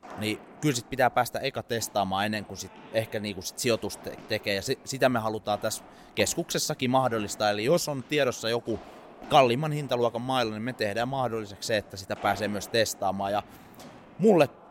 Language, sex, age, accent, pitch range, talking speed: Finnish, male, 30-49, native, 115-150 Hz, 180 wpm